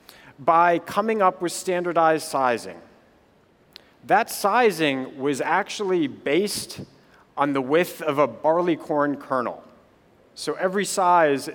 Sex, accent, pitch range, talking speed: male, American, 140-190 Hz, 110 wpm